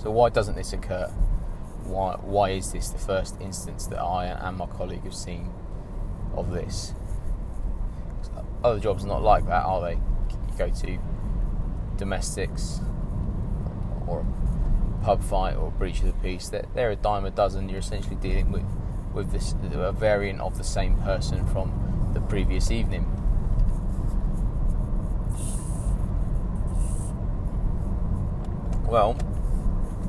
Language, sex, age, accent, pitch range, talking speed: English, male, 20-39, British, 90-100 Hz, 130 wpm